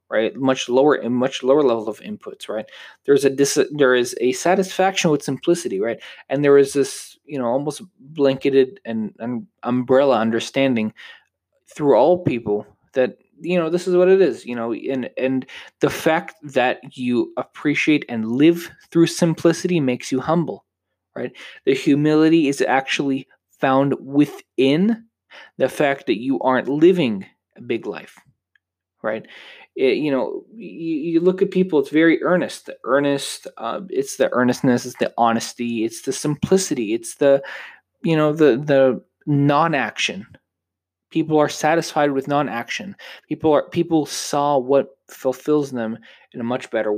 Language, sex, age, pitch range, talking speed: English, male, 20-39, 125-170 Hz, 155 wpm